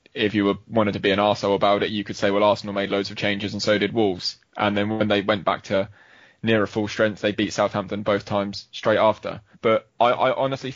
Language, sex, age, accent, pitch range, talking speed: English, male, 20-39, British, 100-115 Hz, 245 wpm